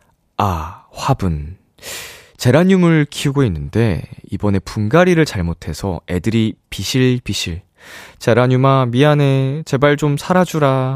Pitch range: 95-145 Hz